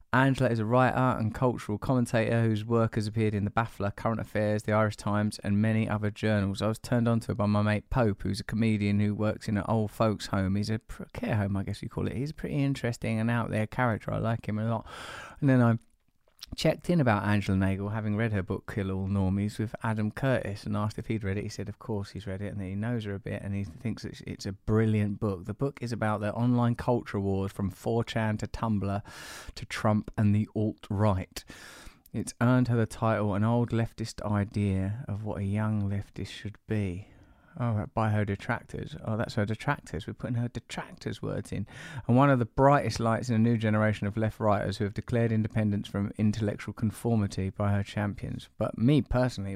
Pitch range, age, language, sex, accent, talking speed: 100-115 Hz, 20-39, English, male, British, 220 wpm